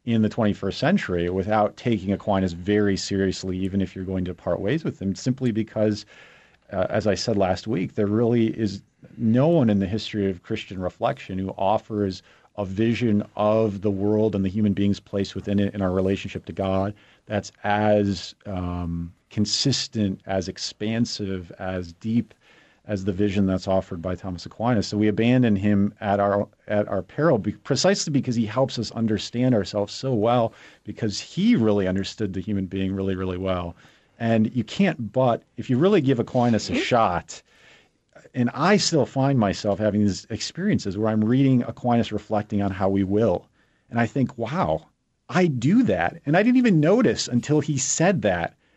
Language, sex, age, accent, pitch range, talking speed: English, male, 40-59, American, 95-120 Hz, 175 wpm